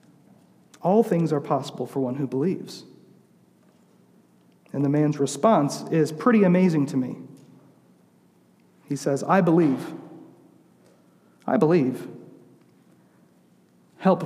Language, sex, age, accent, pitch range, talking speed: English, male, 40-59, American, 150-205 Hz, 100 wpm